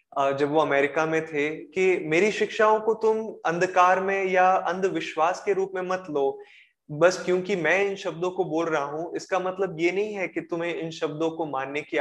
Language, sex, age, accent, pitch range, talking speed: Hindi, male, 20-39, native, 140-175 Hz, 200 wpm